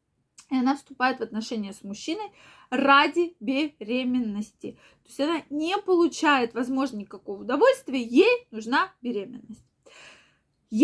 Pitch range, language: 230-320 Hz, Russian